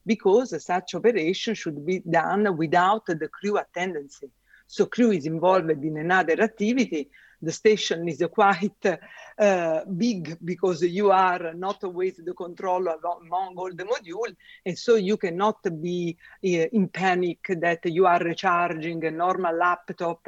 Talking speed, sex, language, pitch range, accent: 140 wpm, female, English, 165-205 Hz, Italian